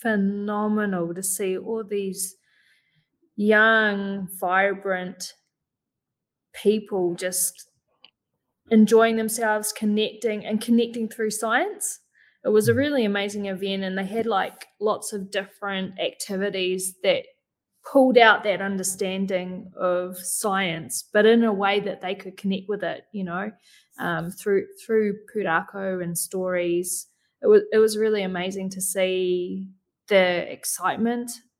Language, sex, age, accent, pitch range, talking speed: English, female, 20-39, Australian, 190-225 Hz, 120 wpm